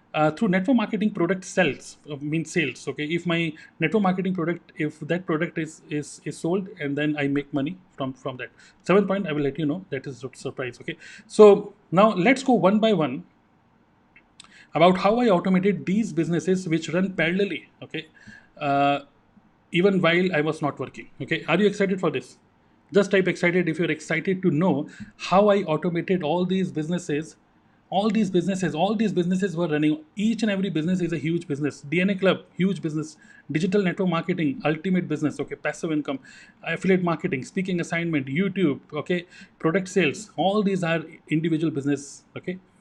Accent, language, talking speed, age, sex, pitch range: native, Hindi, 180 wpm, 30-49, male, 150-195 Hz